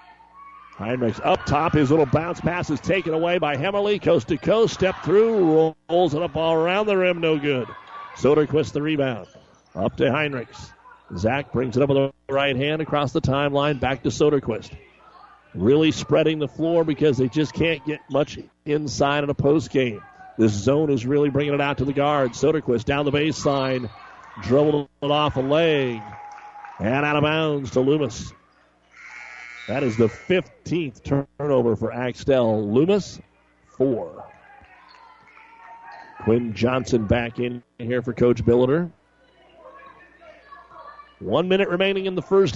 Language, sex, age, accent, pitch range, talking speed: English, male, 50-69, American, 135-175 Hz, 155 wpm